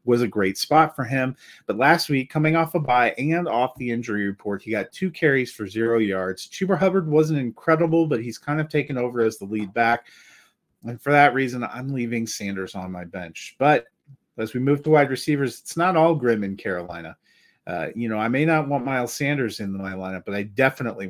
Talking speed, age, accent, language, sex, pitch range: 220 wpm, 30-49, American, English, male, 105-145 Hz